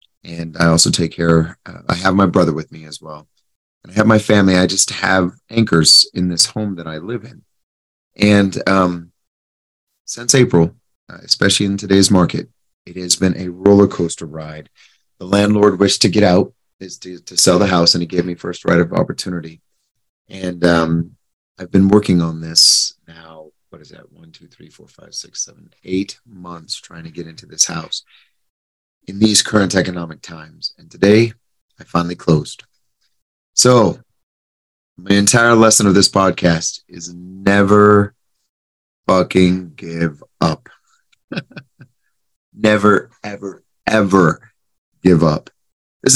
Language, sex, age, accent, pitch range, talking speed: English, male, 30-49, American, 80-100 Hz, 155 wpm